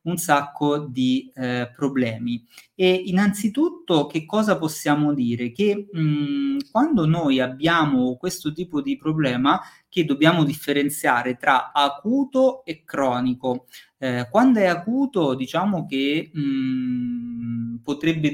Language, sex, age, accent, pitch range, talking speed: Italian, male, 30-49, native, 130-165 Hz, 110 wpm